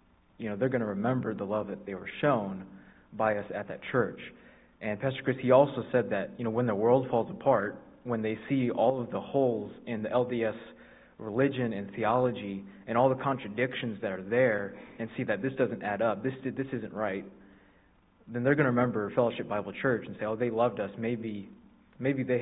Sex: male